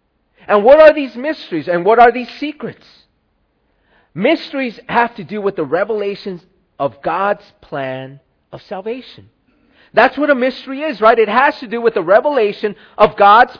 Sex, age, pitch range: male, 40-59, 175-260 Hz